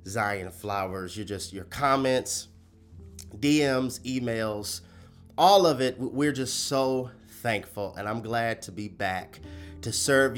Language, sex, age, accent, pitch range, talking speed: English, male, 30-49, American, 100-145 Hz, 120 wpm